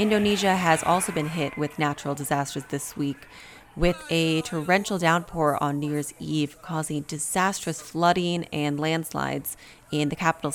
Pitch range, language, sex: 150-180 Hz, English, female